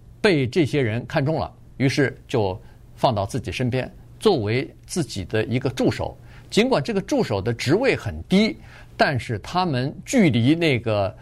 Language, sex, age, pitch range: Chinese, male, 50-69, 120-185 Hz